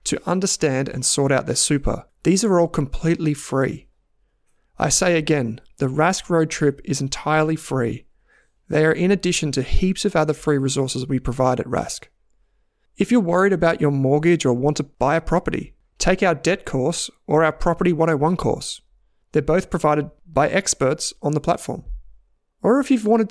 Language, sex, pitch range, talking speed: English, male, 140-175 Hz, 180 wpm